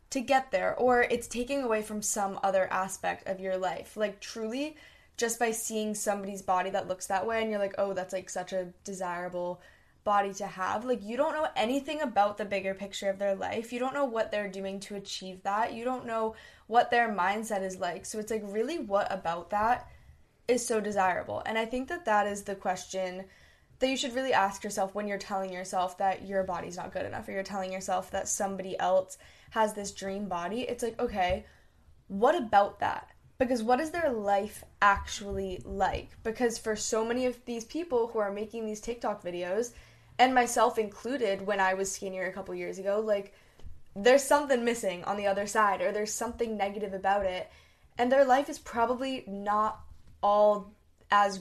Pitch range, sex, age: 195-235 Hz, female, 10-29